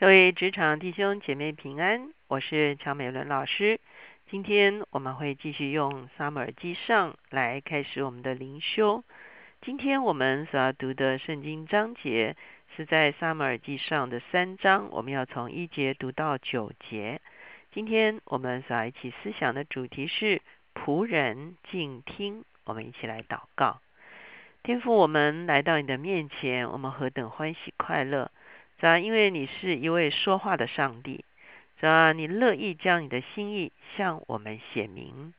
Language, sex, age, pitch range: Chinese, female, 50-69, 135-185 Hz